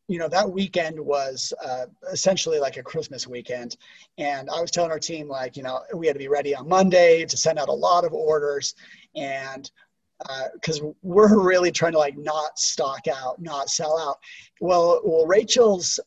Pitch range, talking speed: 145-190 Hz, 190 wpm